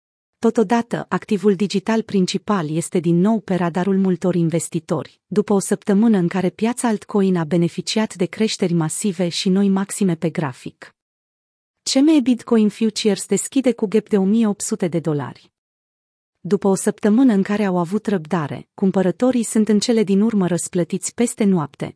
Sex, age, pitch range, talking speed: female, 30-49, 175-225 Hz, 150 wpm